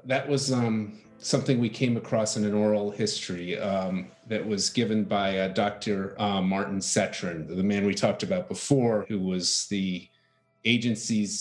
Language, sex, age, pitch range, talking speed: English, male, 30-49, 100-115 Hz, 165 wpm